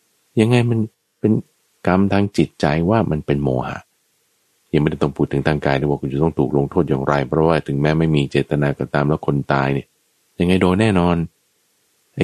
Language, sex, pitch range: Thai, male, 75-115 Hz